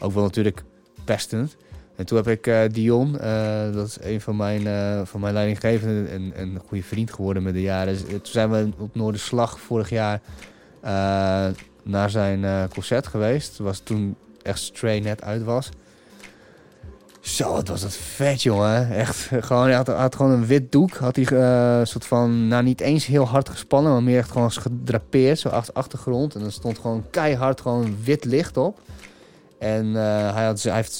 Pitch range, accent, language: 100-115 Hz, Dutch, Dutch